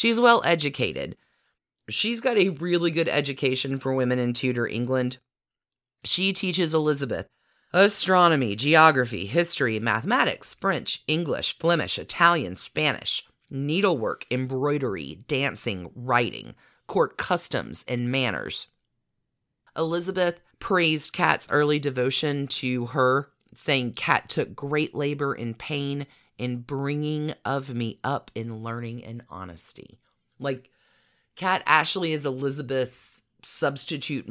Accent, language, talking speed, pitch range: American, English, 110 wpm, 120-155 Hz